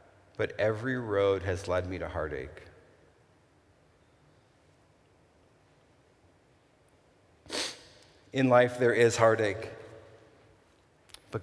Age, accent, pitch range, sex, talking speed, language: 50-69, American, 105-135 Hz, male, 75 wpm, English